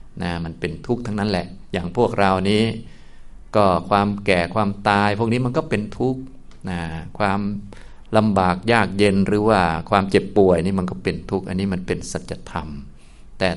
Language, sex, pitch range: Thai, male, 90-105 Hz